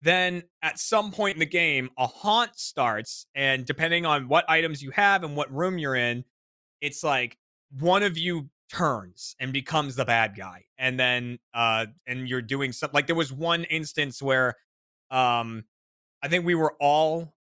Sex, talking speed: male, 180 wpm